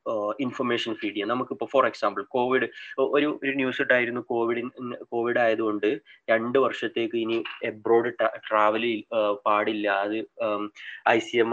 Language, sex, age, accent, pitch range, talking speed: Malayalam, male, 20-39, native, 105-130 Hz, 130 wpm